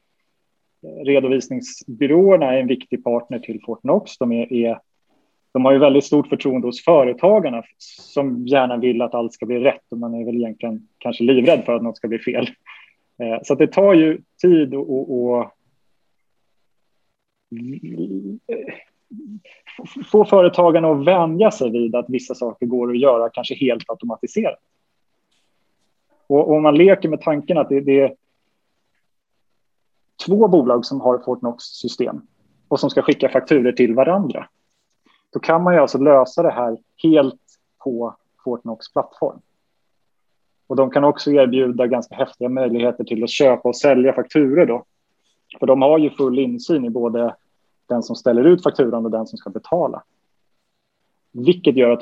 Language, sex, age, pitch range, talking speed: Swedish, male, 30-49, 120-145 Hz, 150 wpm